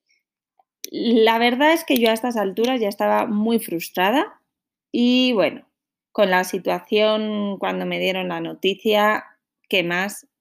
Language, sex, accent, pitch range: Spanish, female, Spanish, 205-270 Hz